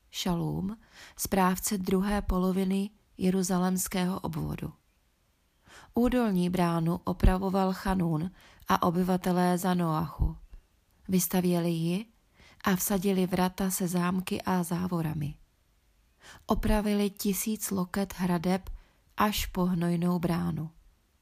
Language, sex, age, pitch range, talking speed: Czech, female, 30-49, 175-195 Hz, 90 wpm